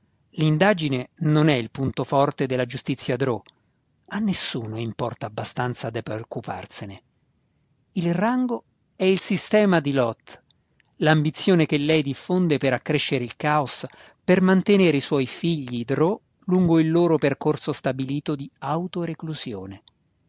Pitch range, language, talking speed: 130-170 Hz, Italian, 125 wpm